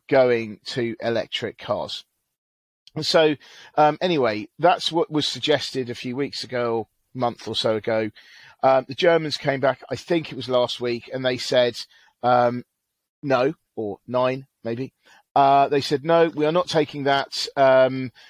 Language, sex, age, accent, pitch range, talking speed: English, male, 40-59, British, 120-140 Hz, 160 wpm